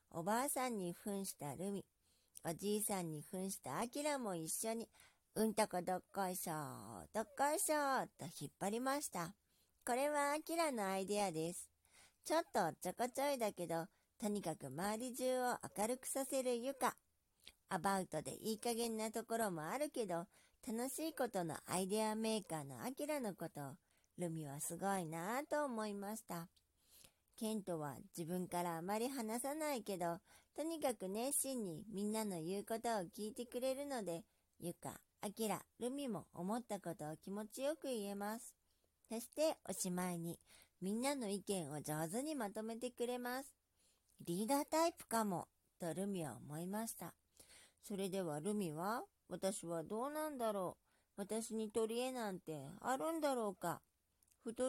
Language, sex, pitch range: Japanese, male, 175-245 Hz